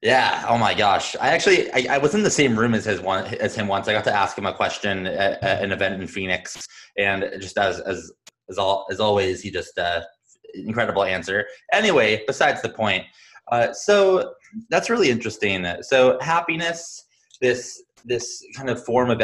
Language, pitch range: English, 100-140 Hz